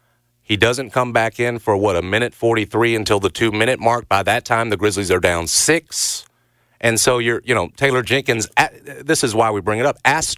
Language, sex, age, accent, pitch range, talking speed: English, male, 40-59, American, 115-155 Hz, 220 wpm